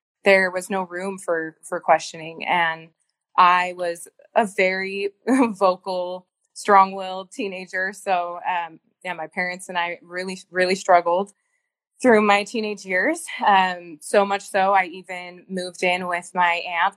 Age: 20-39